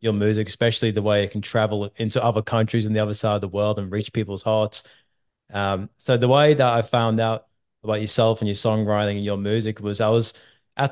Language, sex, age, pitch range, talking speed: English, male, 20-39, 105-120 Hz, 230 wpm